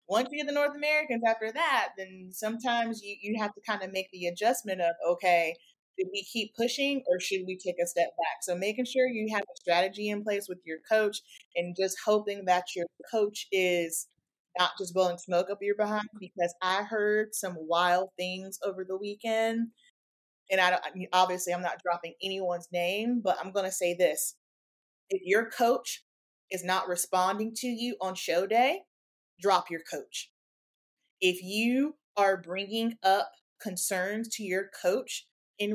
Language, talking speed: English, 180 wpm